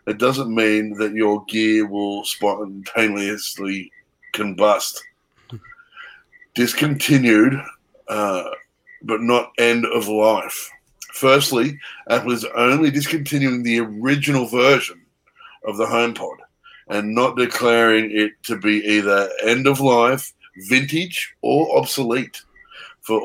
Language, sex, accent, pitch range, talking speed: English, male, Australian, 110-140 Hz, 105 wpm